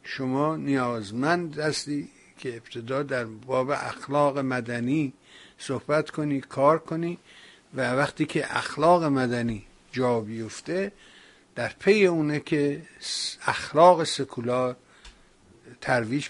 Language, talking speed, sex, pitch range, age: Persian, 100 wpm, male, 125-150 Hz, 60-79